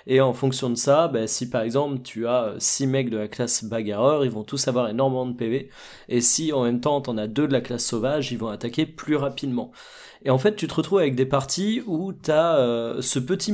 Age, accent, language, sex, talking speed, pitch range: 20-39, French, French, male, 250 wpm, 125-155 Hz